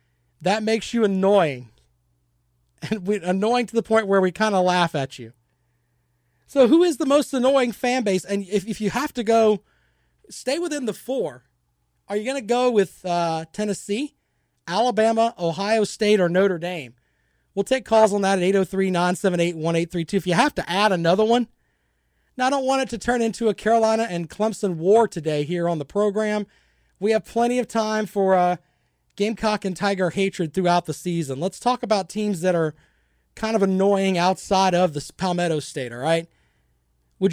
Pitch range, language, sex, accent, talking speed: 150-215 Hz, English, male, American, 180 wpm